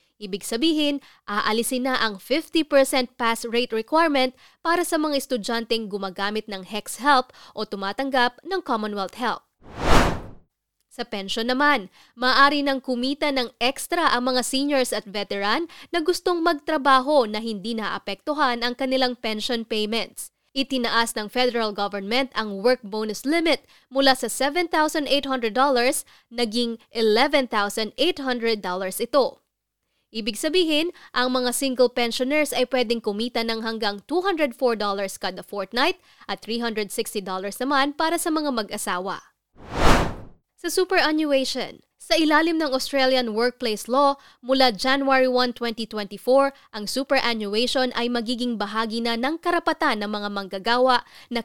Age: 20-39